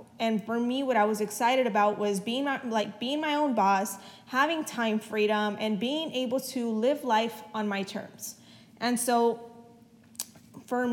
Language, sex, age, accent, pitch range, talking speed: English, female, 20-39, American, 215-245 Hz, 165 wpm